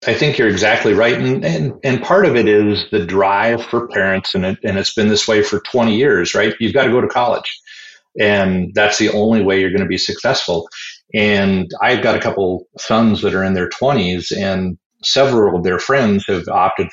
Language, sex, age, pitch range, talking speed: English, male, 40-59, 90-105 Hz, 215 wpm